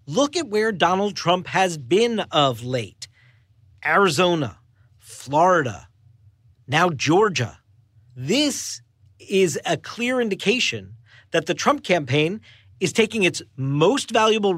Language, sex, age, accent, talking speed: English, male, 40-59, American, 110 wpm